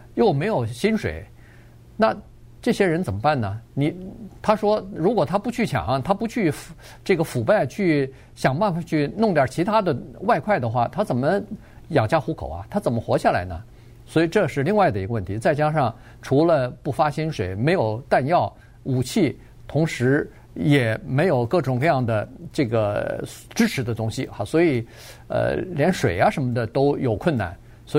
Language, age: Chinese, 50-69